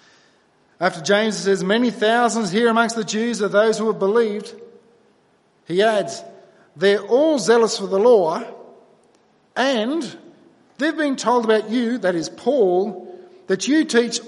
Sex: male